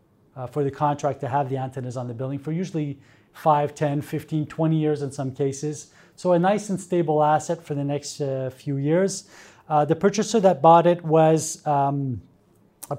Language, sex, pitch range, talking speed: French, male, 140-170 Hz, 195 wpm